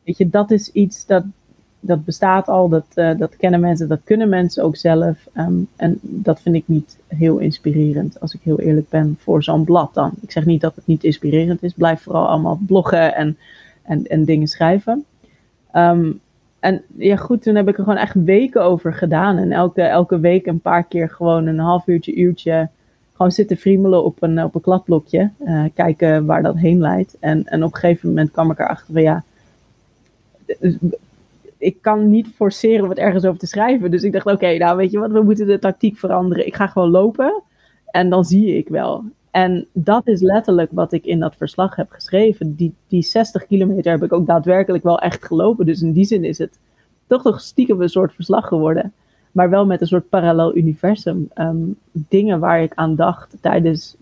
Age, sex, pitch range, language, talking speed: 30-49, female, 160-195 Hz, Dutch, 205 wpm